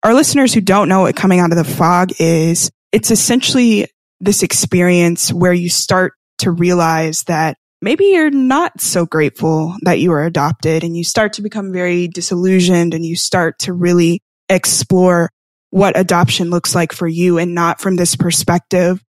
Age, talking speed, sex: 10-29, 170 wpm, female